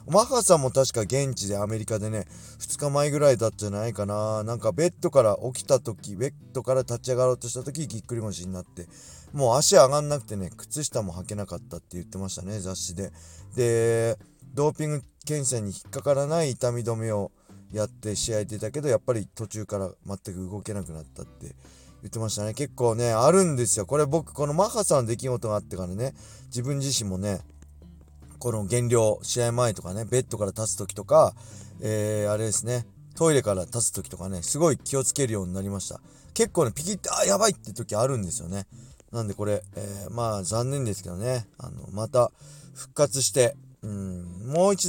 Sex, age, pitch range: male, 20-39, 100-140 Hz